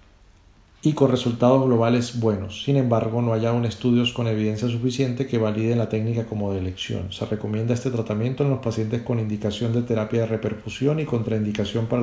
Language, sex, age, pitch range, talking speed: English, male, 40-59, 110-125 Hz, 185 wpm